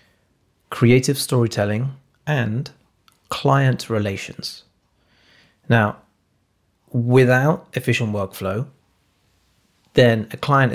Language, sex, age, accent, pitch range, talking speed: English, male, 30-49, British, 105-135 Hz, 65 wpm